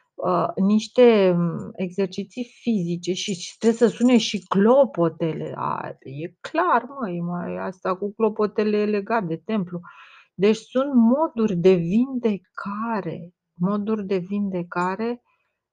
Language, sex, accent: Romanian, female, native